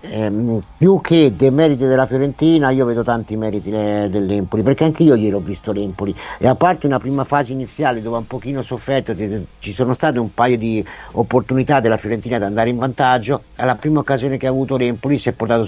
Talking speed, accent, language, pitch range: 205 wpm, native, Italian, 120-155 Hz